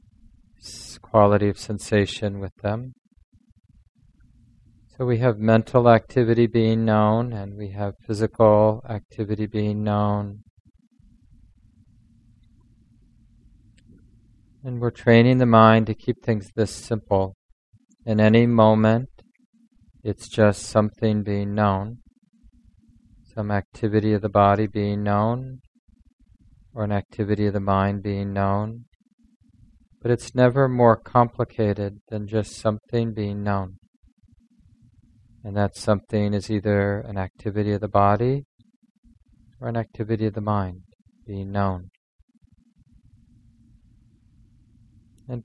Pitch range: 105-115 Hz